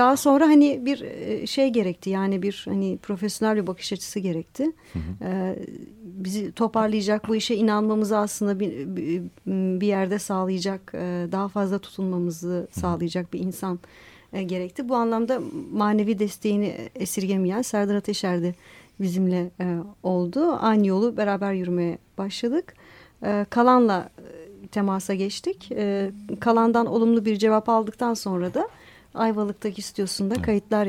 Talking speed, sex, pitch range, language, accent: 110 wpm, female, 185-220 Hz, Turkish, native